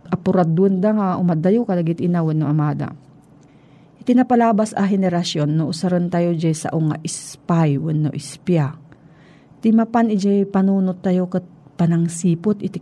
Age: 40-59